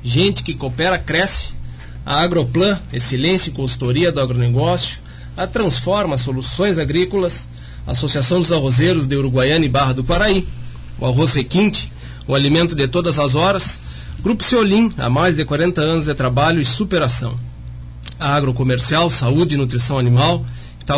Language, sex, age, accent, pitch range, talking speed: Portuguese, male, 40-59, Brazilian, 125-160 Hz, 145 wpm